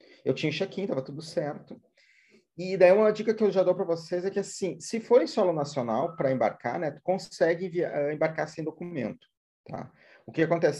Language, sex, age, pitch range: Portuguese, male, 30-49, 140-175 Hz